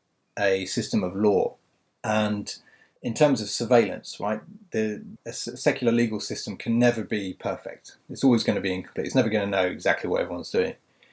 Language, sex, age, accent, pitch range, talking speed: English, male, 30-49, British, 95-120 Hz, 180 wpm